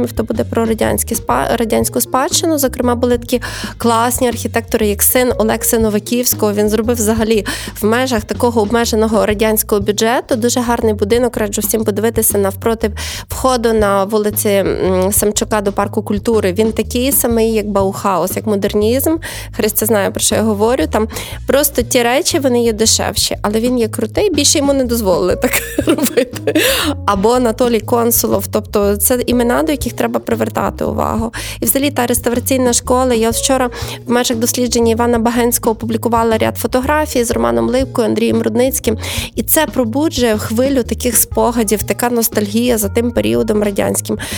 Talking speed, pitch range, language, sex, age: 150 wpm, 215-255 Hz, Ukrainian, female, 20-39